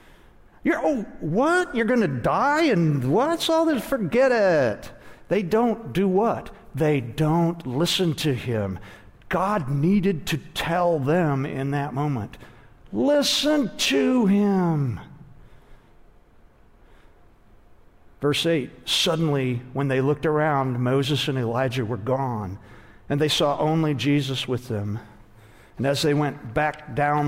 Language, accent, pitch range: English, American, 125-160 Hz